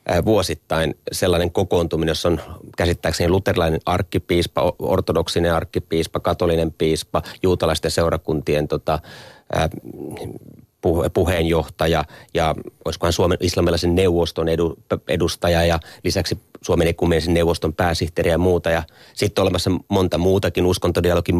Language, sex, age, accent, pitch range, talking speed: Finnish, male, 30-49, native, 80-95 Hz, 95 wpm